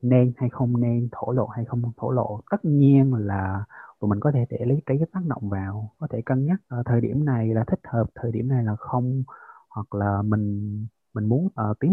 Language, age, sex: Vietnamese, 20-39, male